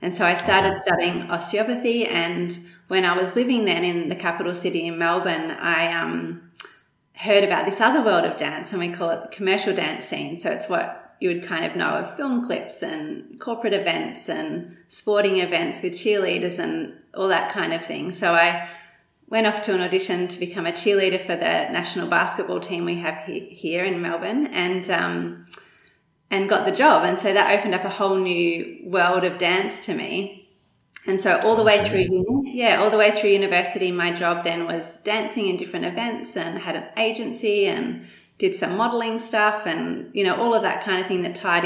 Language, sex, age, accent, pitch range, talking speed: English, female, 30-49, Australian, 175-210 Hz, 200 wpm